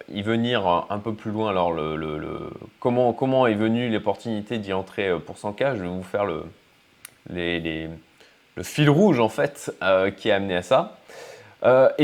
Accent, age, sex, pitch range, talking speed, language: French, 20-39, male, 95-125 Hz, 190 wpm, French